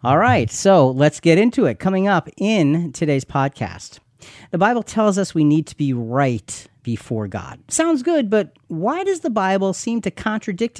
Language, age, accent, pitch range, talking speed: English, 40-59, American, 130-200 Hz, 185 wpm